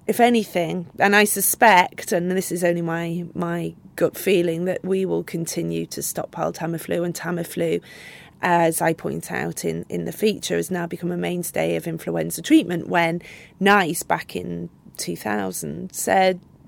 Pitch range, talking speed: 155-195 Hz, 160 wpm